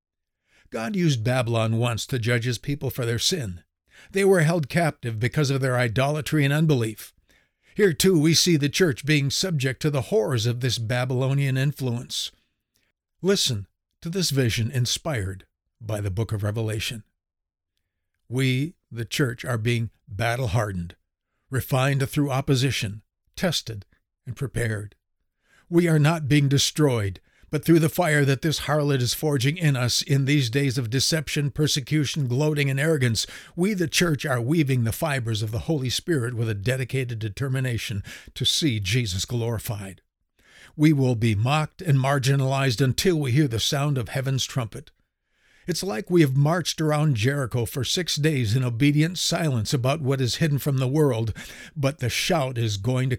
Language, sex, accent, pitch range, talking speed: English, male, American, 115-150 Hz, 160 wpm